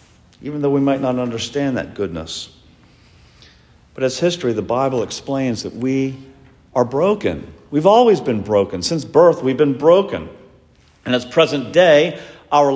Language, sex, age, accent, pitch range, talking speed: English, male, 50-69, American, 100-145 Hz, 150 wpm